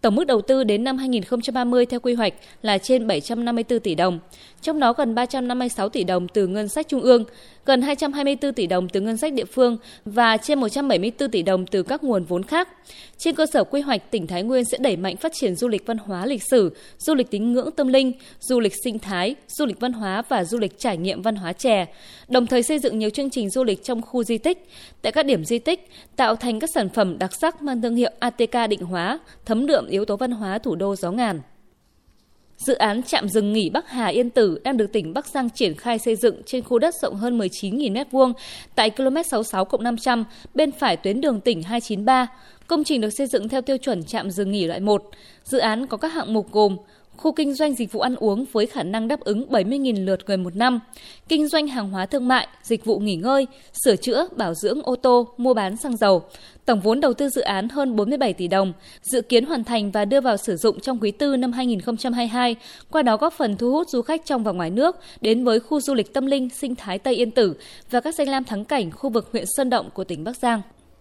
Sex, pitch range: female, 210-265 Hz